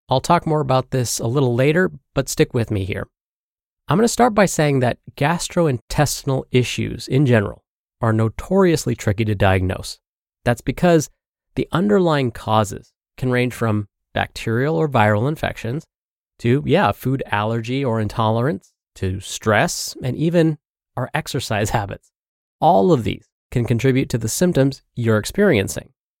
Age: 30-49